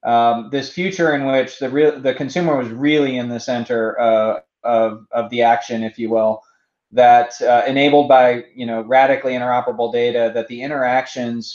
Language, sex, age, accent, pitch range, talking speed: English, male, 20-39, American, 115-130 Hz, 175 wpm